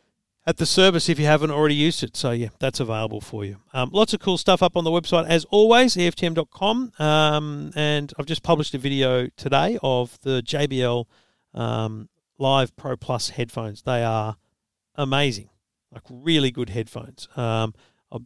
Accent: Australian